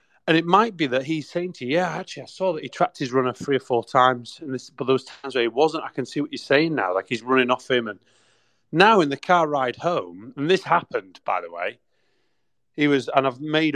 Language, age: English, 30-49